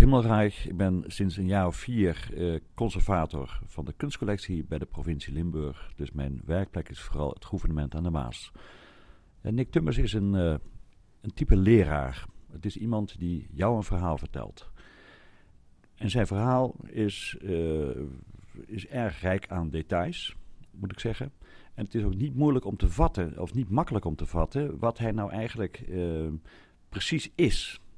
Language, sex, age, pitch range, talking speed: Dutch, male, 50-69, 85-115 Hz, 160 wpm